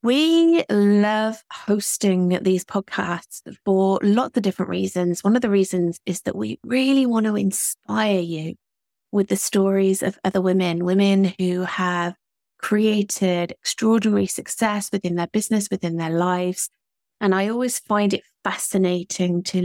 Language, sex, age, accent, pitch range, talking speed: English, female, 30-49, British, 180-220 Hz, 145 wpm